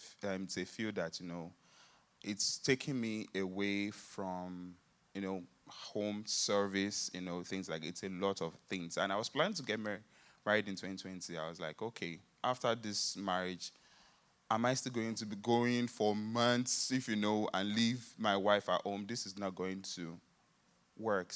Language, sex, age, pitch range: English, male, 20-39, 95-130 Hz